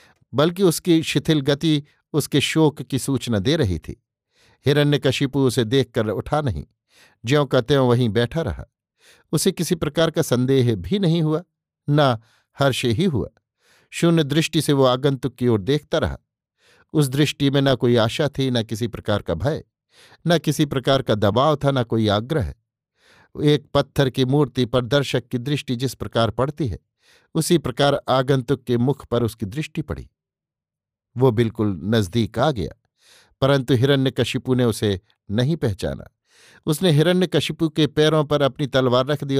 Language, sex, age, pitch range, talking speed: Hindi, male, 50-69, 120-150 Hz, 160 wpm